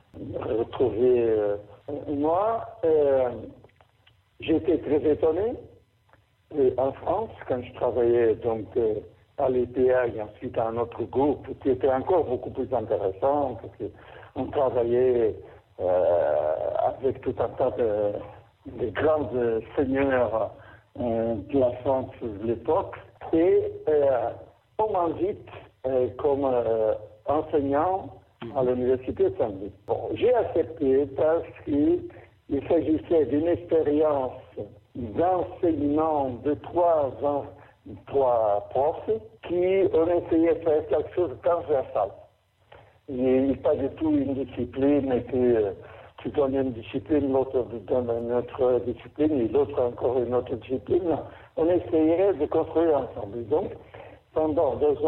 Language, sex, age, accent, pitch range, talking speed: French, male, 60-79, French, 120-170 Hz, 125 wpm